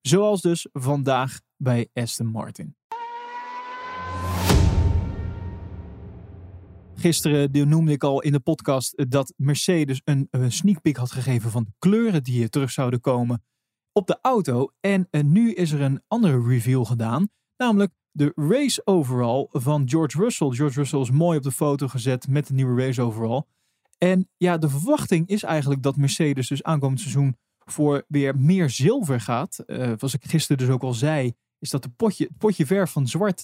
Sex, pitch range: male, 125-180 Hz